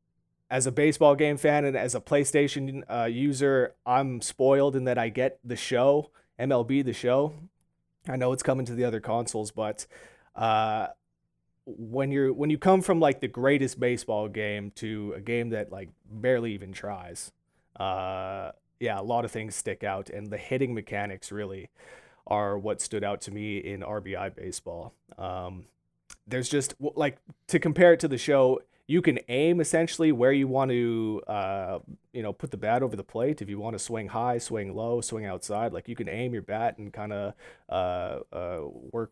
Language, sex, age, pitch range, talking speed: English, male, 30-49, 105-140 Hz, 185 wpm